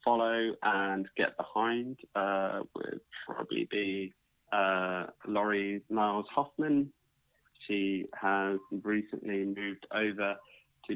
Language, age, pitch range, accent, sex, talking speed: English, 20-39, 95-110 Hz, British, male, 100 wpm